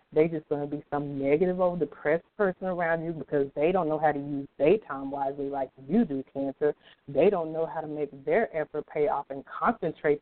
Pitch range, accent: 150-215 Hz, American